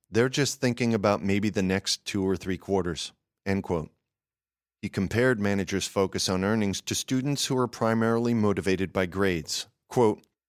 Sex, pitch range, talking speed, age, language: male, 95-115 Hz, 160 wpm, 40-59, English